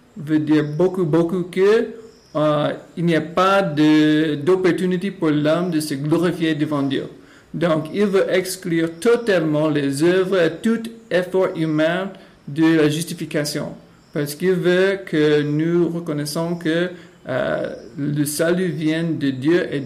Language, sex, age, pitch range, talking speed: French, male, 50-69, 155-180 Hz, 135 wpm